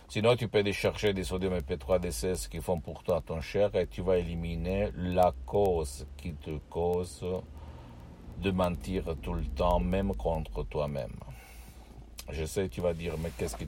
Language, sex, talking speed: Italian, male, 170 wpm